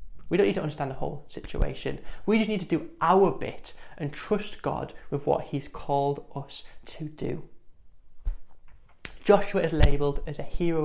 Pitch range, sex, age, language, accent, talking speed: 140-180 Hz, male, 20-39, English, British, 170 wpm